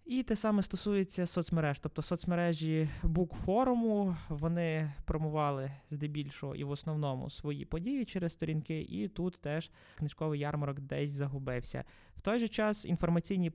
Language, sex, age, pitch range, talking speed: Ukrainian, male, 20-39, 140-170 Hz, 135 wpm